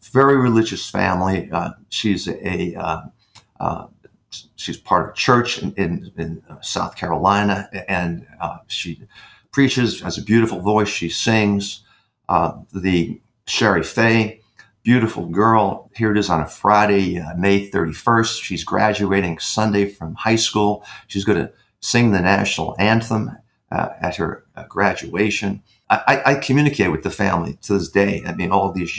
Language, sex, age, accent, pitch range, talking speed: English, male, 50-69, American, 90-110 Hz, 155 wpm